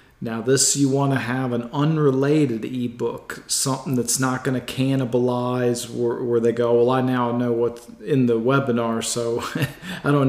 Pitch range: 120-130 Hz